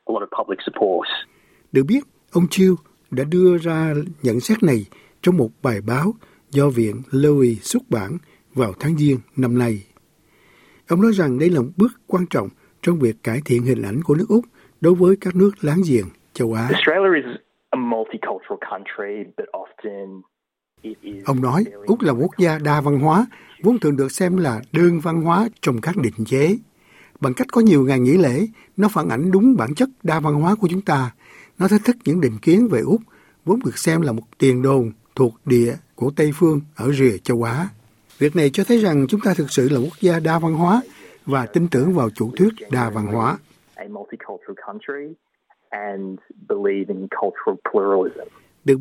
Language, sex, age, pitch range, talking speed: Vietnamese, male, 60-79, 125-185 Hz, 170 wpm